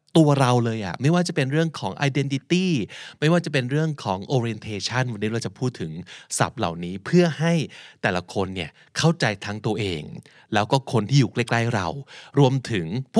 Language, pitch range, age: Thai, 105-150 Hz, 20-39